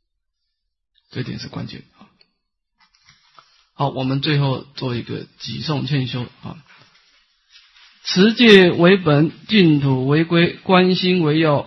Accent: native